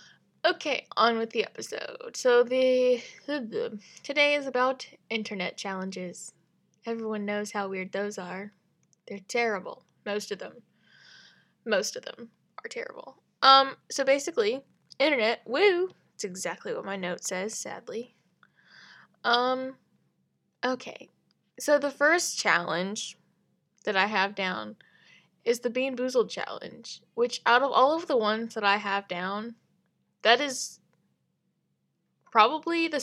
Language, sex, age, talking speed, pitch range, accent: English, female, 10-29, 125 wpm, 200-270 Hz, American